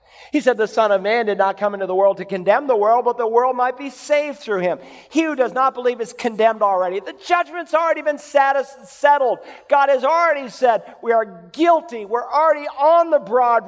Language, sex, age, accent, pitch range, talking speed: English, male, 50-69, American, 200-275 Hz, 215 wpm